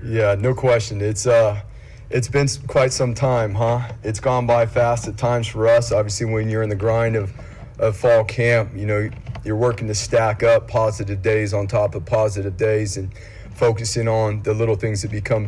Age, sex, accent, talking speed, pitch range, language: 30-49, male, American, 200 wpm, 105-115 Hz, English